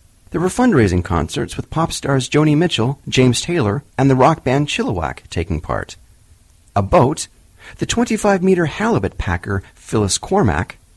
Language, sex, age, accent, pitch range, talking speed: English, male, 40-59, American, 95-160 Hz, 140 wpm